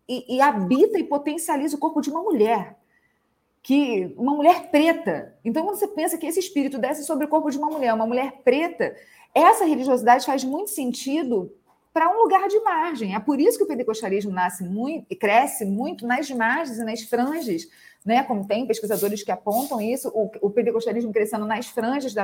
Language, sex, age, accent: Portuguese, female, 40-59, Brazilian